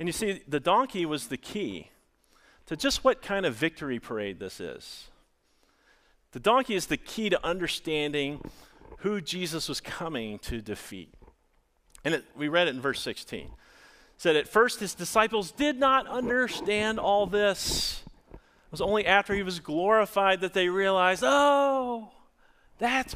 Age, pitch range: 40-59, 150-220 Hz